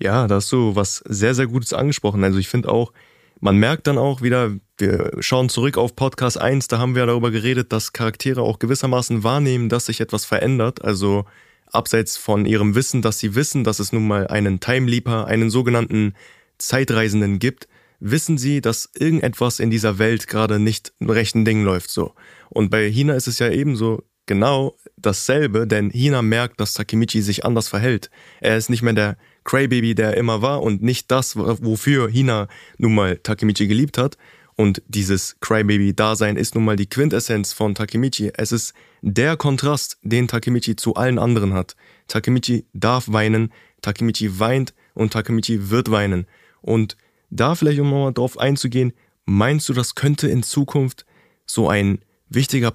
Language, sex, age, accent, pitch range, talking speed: German, male, 20-39, German, 110-130 Hz, 175 wpm